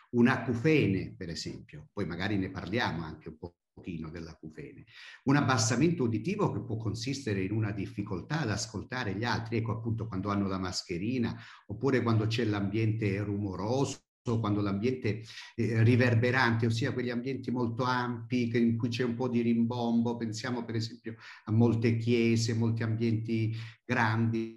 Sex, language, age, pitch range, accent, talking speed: male, Italian, 50-69, 105-125 Hz, native, 150 wpm